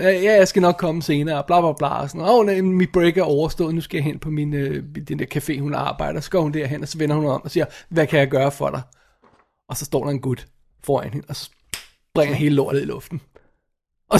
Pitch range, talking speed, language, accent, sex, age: 165-210 Hz, 250 wpm, Danish, native, male, 20-39